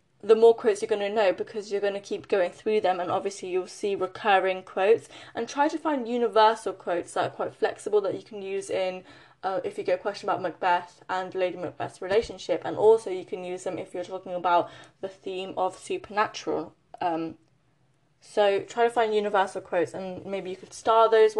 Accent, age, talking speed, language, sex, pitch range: British, 10-29, 210 wpm, English, female, 185-225 Hz